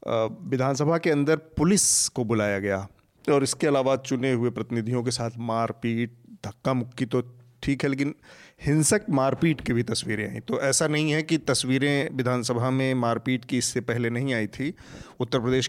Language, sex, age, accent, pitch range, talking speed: Hindi, male, 40-59, native, 115-140 Hz, 170 wpm